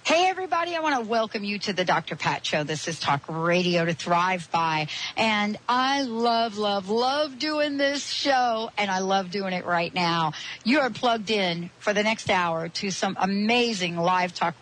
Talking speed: 195 wpm